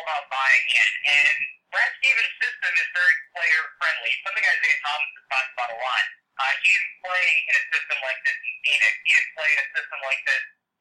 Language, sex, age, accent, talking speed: English, male, 30-49, American, 215 wpm